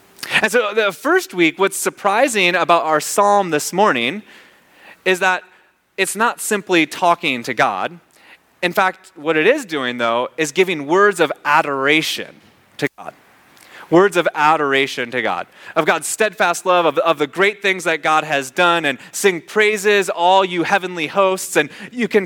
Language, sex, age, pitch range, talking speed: English, male, 30-49, 155-200 Hz, 165 wpm